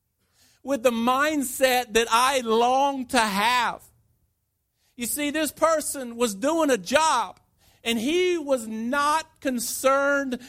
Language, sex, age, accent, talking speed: English, male, 50-69, American, 120 wpm